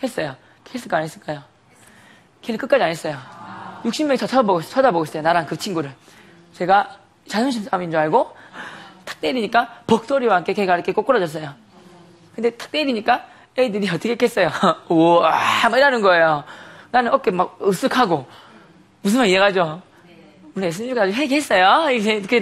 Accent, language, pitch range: native, Korean, 180-270 Hz